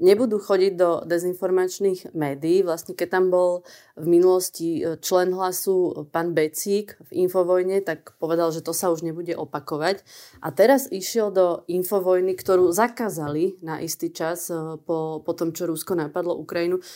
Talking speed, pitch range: 150 wpm, 170-200 Hz